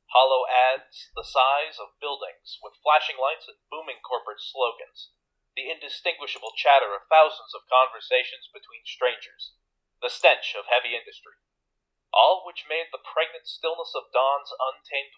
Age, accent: 30-49, American